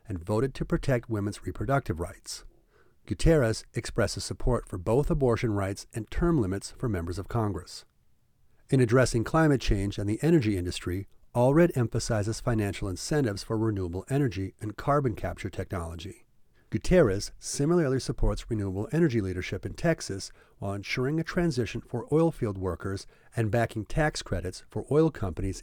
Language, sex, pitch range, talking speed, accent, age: English, male, 100-140 Hz, 145 wpm, American, 40-59